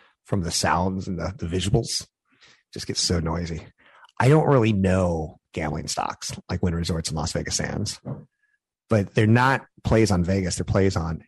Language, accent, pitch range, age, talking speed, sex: English, American, 90-120 Hz, 30-49, 175 wpm, male